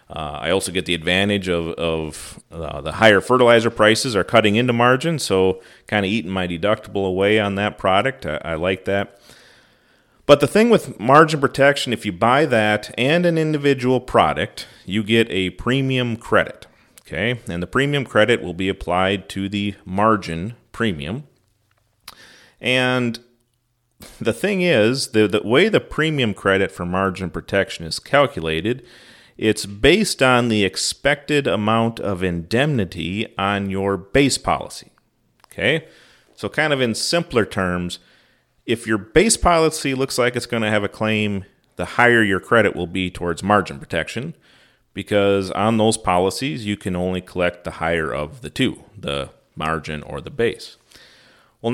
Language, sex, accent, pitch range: English, male, American, 95-125 Hz